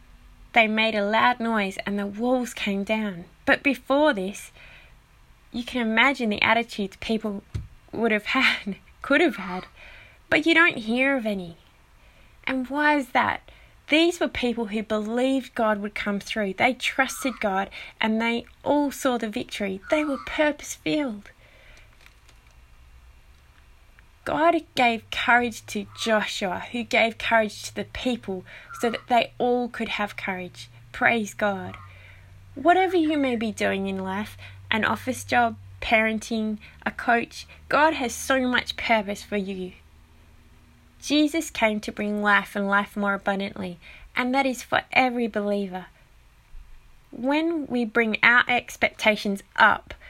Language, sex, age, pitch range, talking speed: English, female, 20-39, 195-245 Hz, 140 wpm